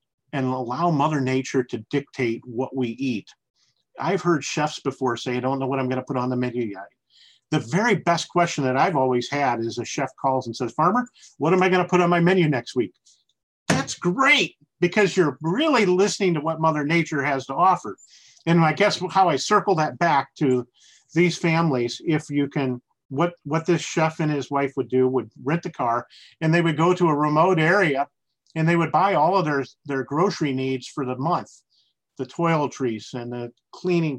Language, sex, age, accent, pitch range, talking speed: English, male, 50-69, American, 130-170 Hz, 205 wpm